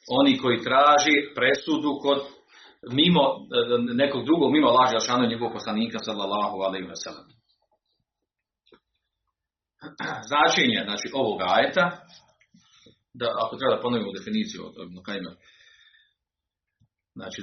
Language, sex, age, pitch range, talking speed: Croatian, male, 40-59, 105-175 Hz, 100 wpm